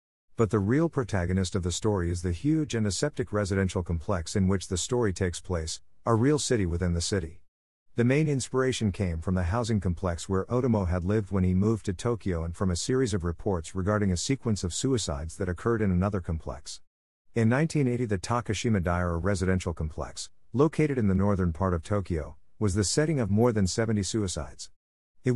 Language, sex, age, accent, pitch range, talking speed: English, male, 50-69, American, 90-115 Hz, 195 wpm